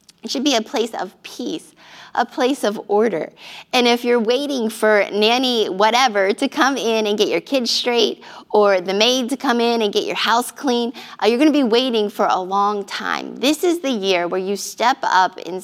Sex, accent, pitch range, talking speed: female, American, 195-235 Hz, 215 wpm